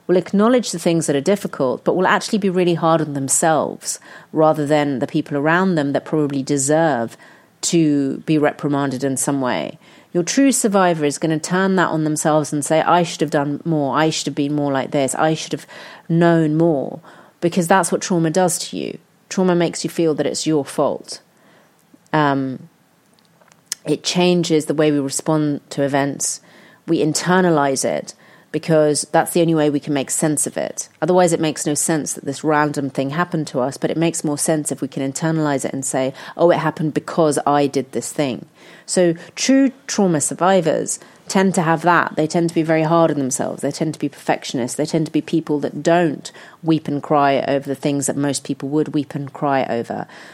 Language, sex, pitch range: English, female, 145-170 Hz